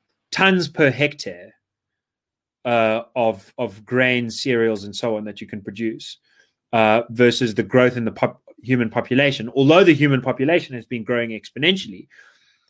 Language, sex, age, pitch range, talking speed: English, male, 30-49, 115-140 Hz, 145 wpm